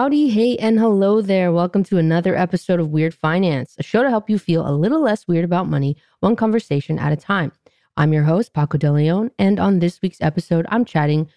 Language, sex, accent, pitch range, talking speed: English, female, American, 145-185 Hz, 220 wpm